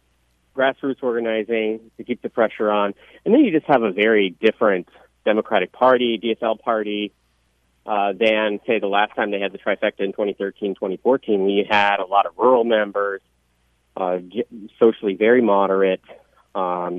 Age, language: 30-49, English